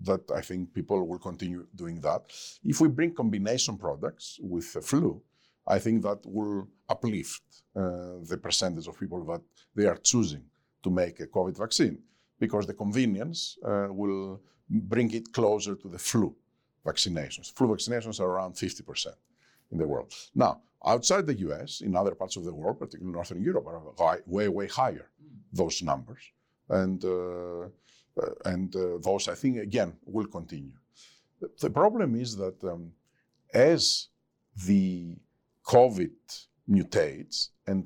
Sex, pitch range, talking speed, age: male, 90-110 Hz, 150 wpm, 50-69